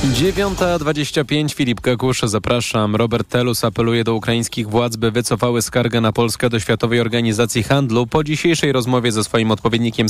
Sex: male